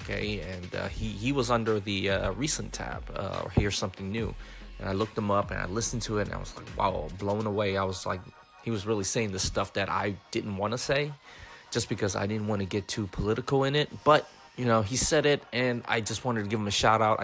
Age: 20-39